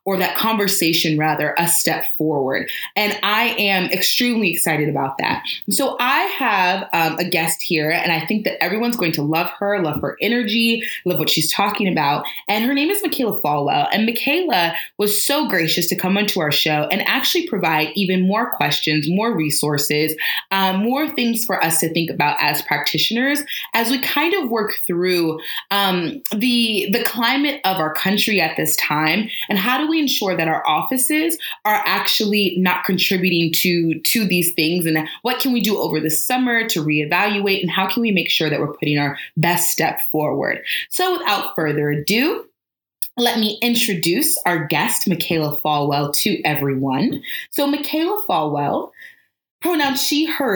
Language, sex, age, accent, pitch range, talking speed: English, female, 20-39, American, 160-235 Hz, 175 wpm